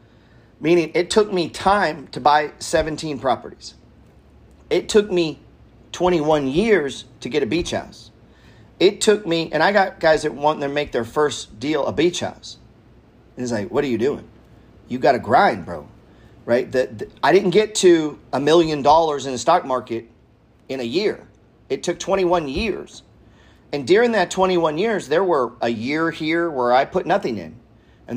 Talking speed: 180 wpm